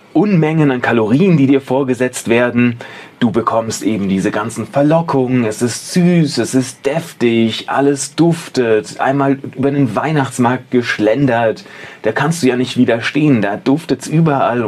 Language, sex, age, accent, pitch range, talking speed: German, male, 30-49, German, 115-140 Hz, 145 wpm